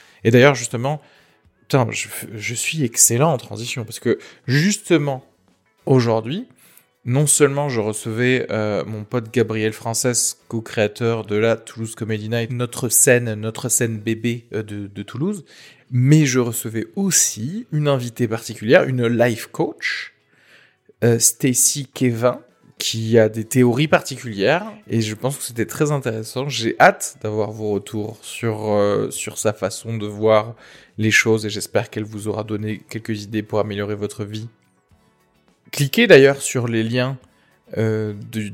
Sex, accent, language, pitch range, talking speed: male, French, French, 110-125 Hz, 150 wpm